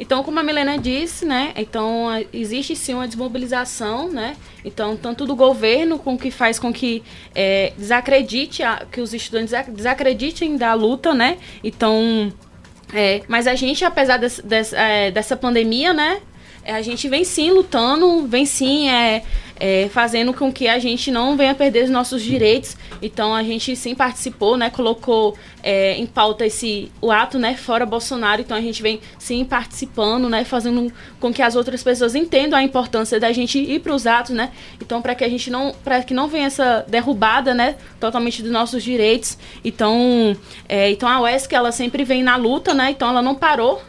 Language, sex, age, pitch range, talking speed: Portuguese, female, 20-39, 220-260 Hz, 185 wpm